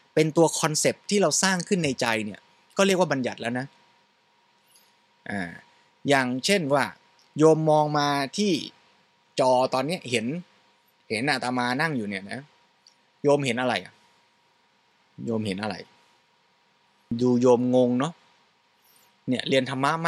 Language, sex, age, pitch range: Thai, male, 20-39, 130-180 Hz